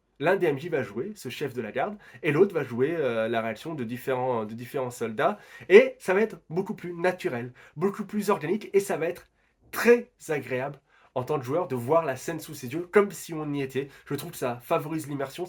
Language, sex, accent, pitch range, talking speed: French, male, French, 125-180 Hz, 235 wpm